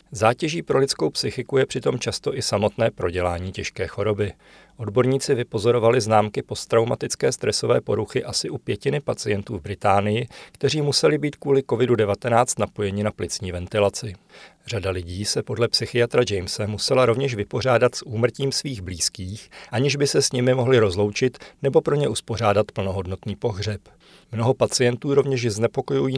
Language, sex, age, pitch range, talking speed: Czech, male, 40-59, 105-130 Hz, 145 wpm